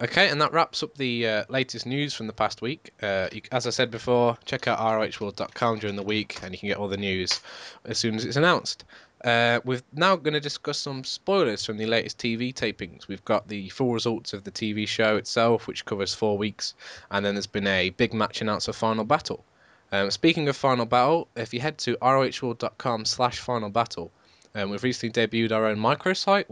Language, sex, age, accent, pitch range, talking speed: English, male, 10-29, British, 105-125 Hz, 215 wpm